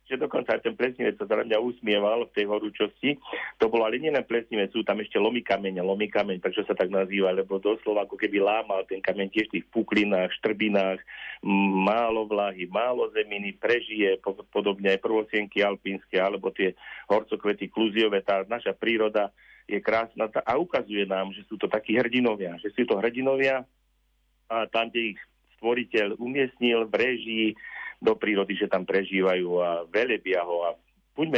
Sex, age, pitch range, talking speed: male, 40-59, 95-110 Hz, 160 wpm